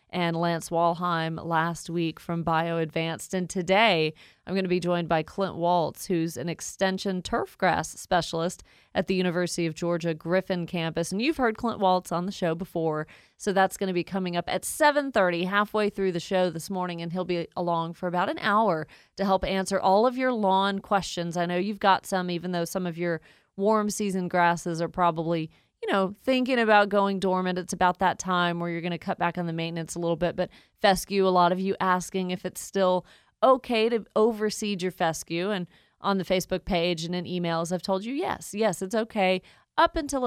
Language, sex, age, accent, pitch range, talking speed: English, female, 30-49, American, 170-195 Hz, 205 wpm